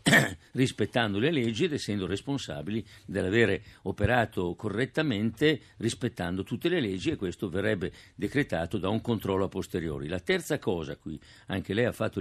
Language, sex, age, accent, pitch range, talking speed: Italian, male, 50-69, native, 95-120 Hz, 145 wpm